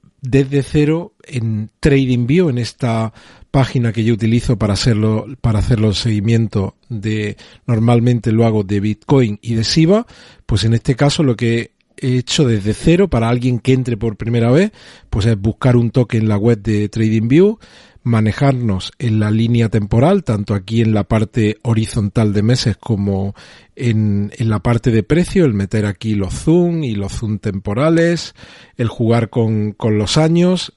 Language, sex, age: Spanish, male, 40-59